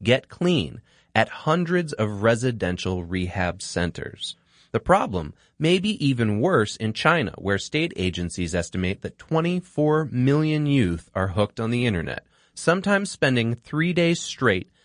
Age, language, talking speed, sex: 30-49, English, 135 wpm, male